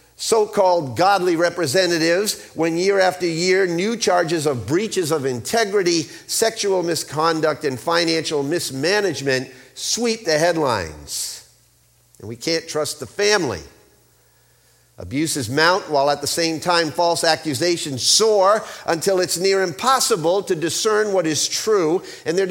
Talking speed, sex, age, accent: 130 wpm, male, 50-69, American